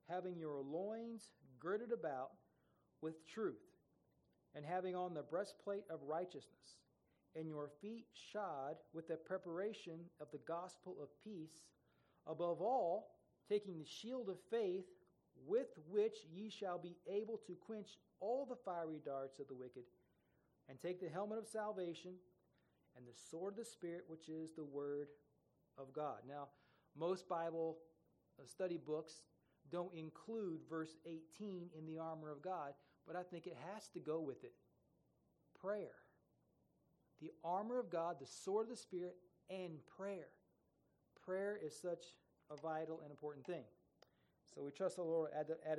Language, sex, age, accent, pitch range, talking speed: English, male, 40-59, American, 150-190 Hz, 150 wpm